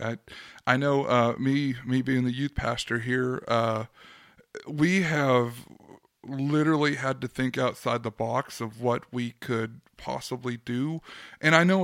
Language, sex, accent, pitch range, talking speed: English, male, American, 130-150 Hz, 150 wpm